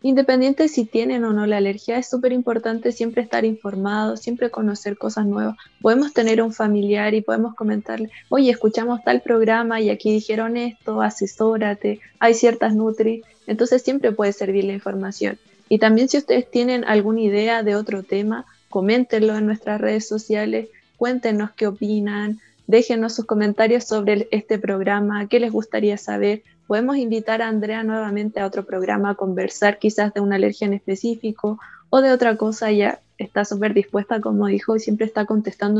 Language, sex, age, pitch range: Romanian, female, 20-39, 205-230 Hz